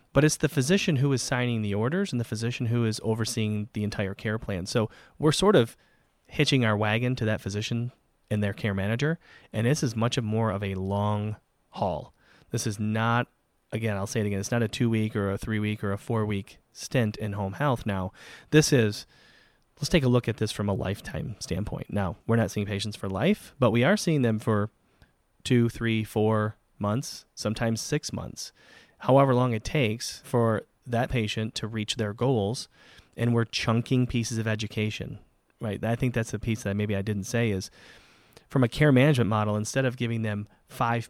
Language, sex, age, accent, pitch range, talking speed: English, male, 30-49, American, 105-125 Hz, 200 wpm